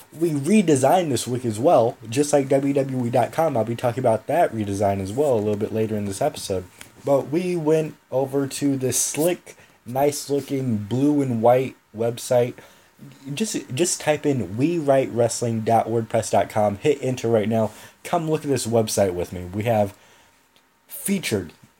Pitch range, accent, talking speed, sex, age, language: 110-145 Hz, American, 155 wpm, male, 20-39, English